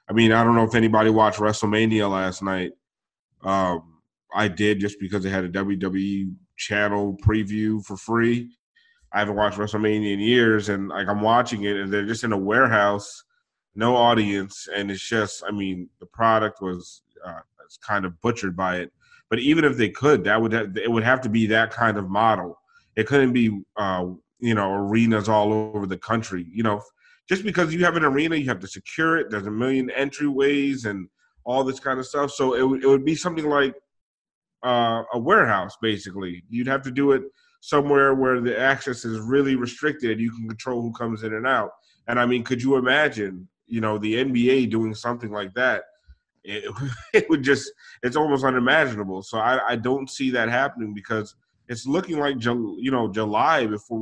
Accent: American